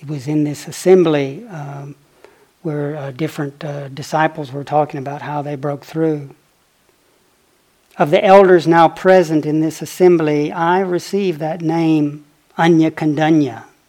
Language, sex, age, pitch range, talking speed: English, male, 60-79, 150-185 Hz, 140 wpm